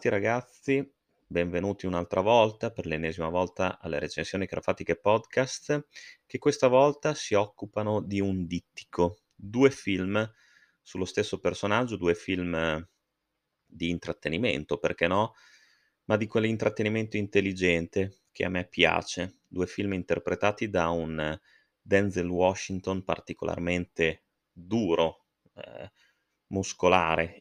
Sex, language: male, Italian